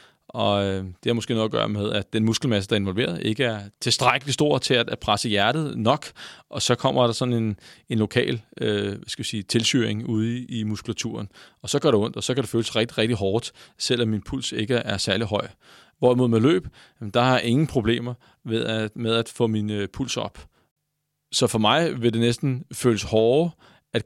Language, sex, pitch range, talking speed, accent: Danish, male, 110-125 Hz, 210 wpm, native